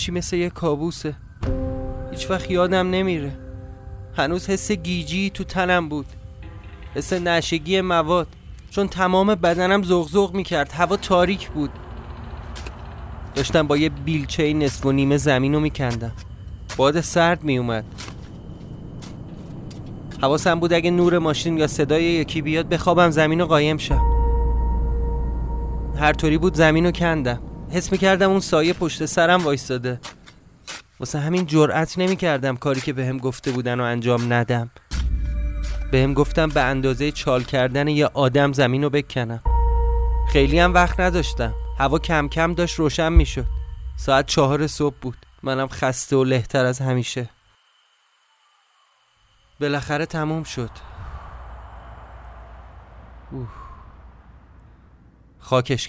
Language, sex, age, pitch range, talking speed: Persian, male, 30-49, 110-170 Hz, 120 wpm